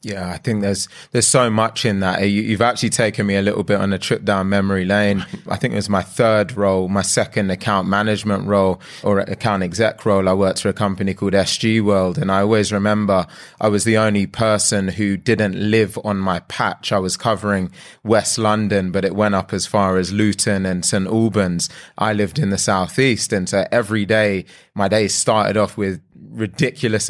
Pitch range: 100-110 Hz